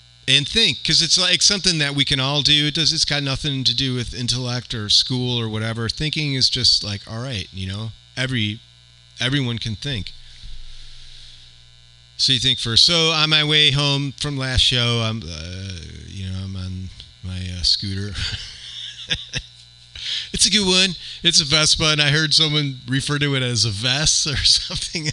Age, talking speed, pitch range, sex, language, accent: 40-59, 180 wpm, 95-140 Hz, male, English, American